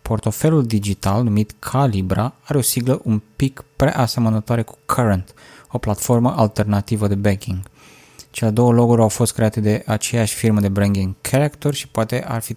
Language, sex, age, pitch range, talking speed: Romanian, male, 20-39, 105-125 Hz, 160 wpm